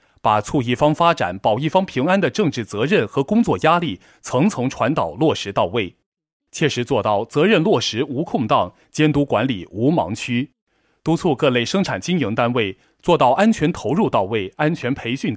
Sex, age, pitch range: male, 30-49, 125-180 Hz